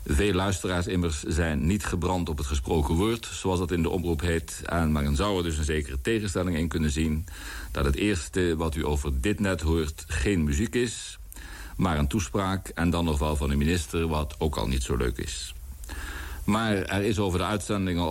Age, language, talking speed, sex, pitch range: 60-79, Dutch, 205 wpm, male, 75-100 Hz